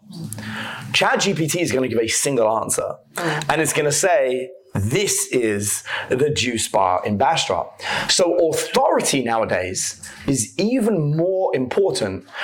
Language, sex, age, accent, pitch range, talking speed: English, male, 30-49, British, 115-170 Hz, 135 wpm